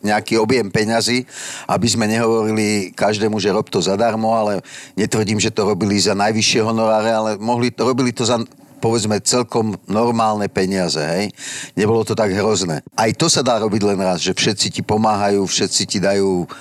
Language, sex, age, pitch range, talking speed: Slovak, male, 50-69, 100-115 Hz, 170 wpm